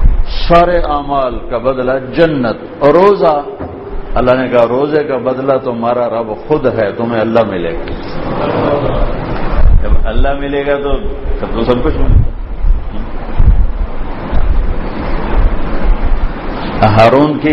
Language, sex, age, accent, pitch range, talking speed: English, male, 60-79, Indian, 105-145 Hz, 90 wpm